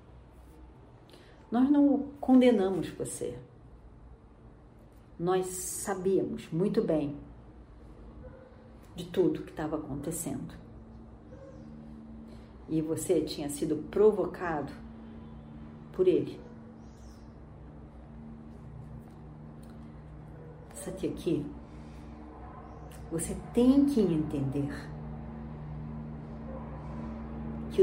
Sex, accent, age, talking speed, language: female, Brazilian, 40-59, 60 wpm, Portuguese